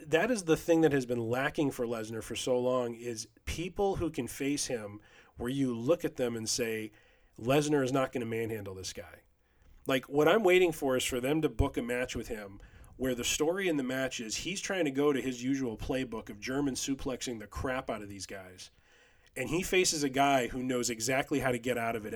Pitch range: 115-140 Hz